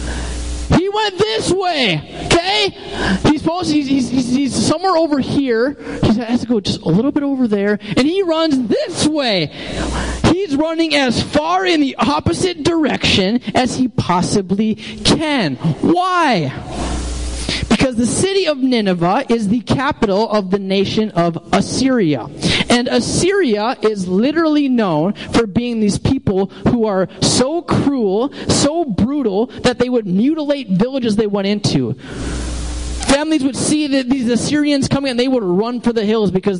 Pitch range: 195-285 Hz